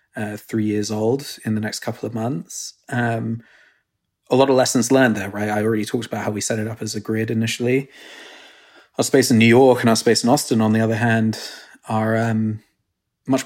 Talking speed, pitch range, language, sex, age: 215 wpm, 110-120 Hz, English, male, 20-39